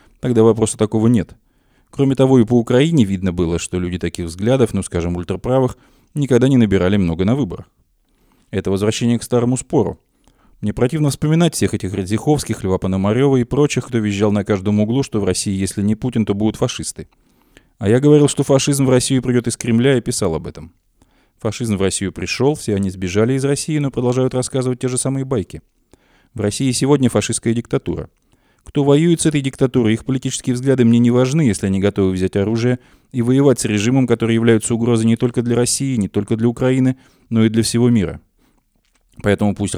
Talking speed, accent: 190 wpm, native